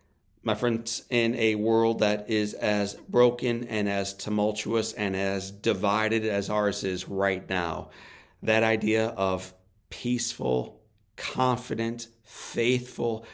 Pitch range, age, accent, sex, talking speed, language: 100-120 Hz, 40-59, American, male, 115 wpm, English